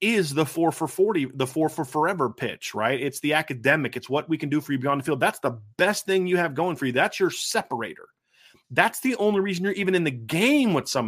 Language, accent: English, American